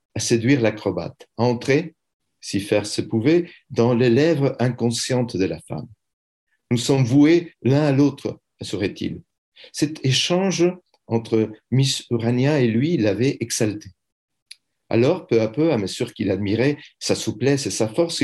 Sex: male